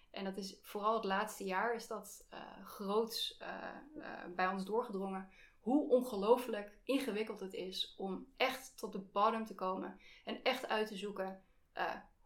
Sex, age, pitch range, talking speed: female, 20-39, 195-245 Hz, 165 wpm